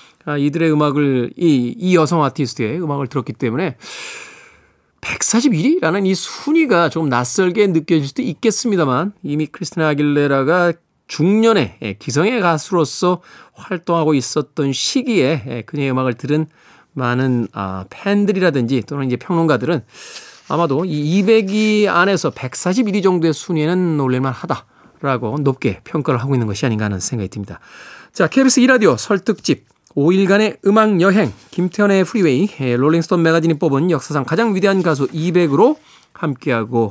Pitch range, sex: 135-195 Hz, male